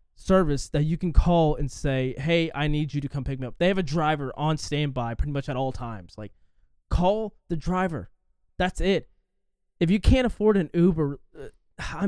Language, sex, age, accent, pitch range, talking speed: English, male, 20-39, American, 130-185 Hz, 200 wpm